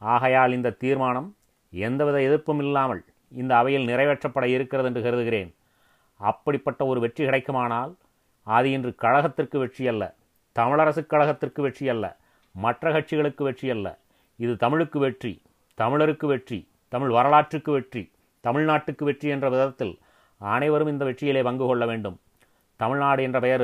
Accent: native